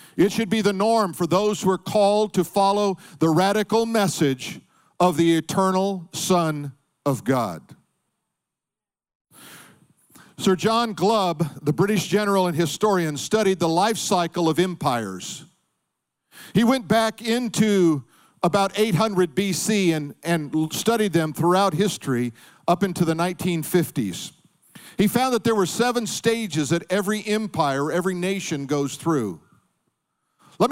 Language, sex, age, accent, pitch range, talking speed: English, male, 50-69, American, 165-210 Hz, 130 wpm